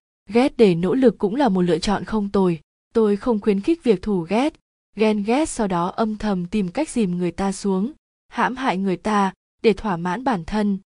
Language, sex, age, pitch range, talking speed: Vietnamese, female, 20-39, 180-225 Hz, 215 wpm